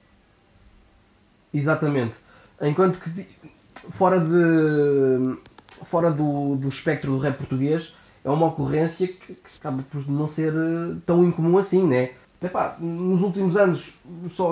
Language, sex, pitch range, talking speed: Portuguese, male, 135-175 Hz, 125 wpm